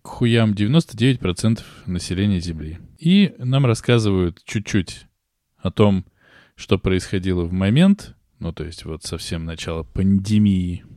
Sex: male